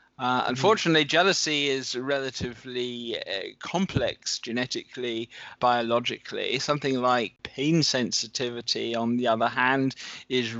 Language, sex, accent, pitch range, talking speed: English, male, British, 120-135 Hz, 100 wpm